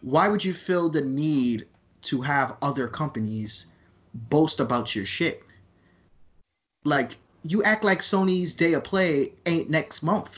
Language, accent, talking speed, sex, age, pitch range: English, American, 145 wpm, male, 20-39, 110-160 Hz